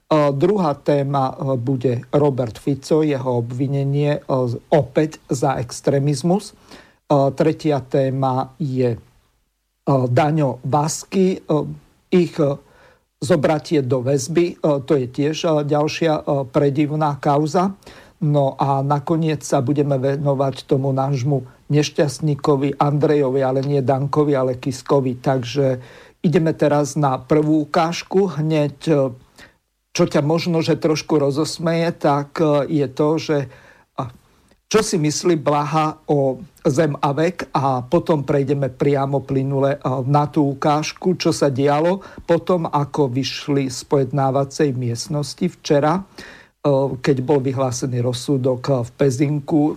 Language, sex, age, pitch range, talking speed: Slovak, male, 50-69, 135-155 Hz, 105 wpm